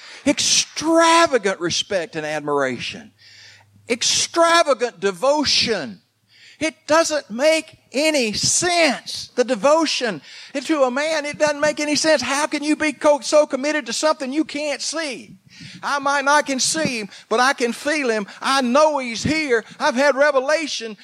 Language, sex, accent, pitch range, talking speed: English, male, American, 225-290 Hz, 145 wpm